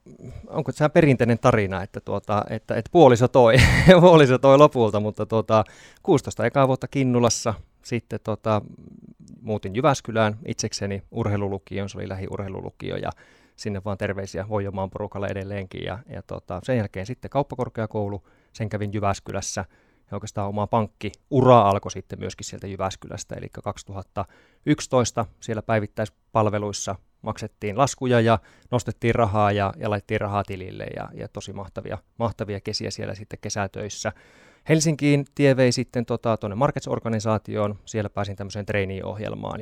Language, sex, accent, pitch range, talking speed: Finnish, male, native, 100-120 Hz, 130 wpm